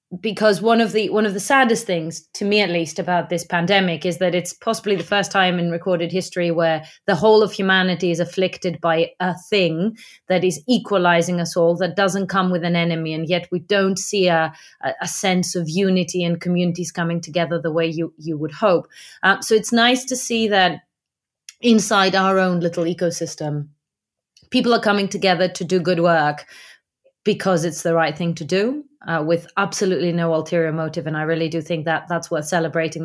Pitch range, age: 170-200 Hz, 30-49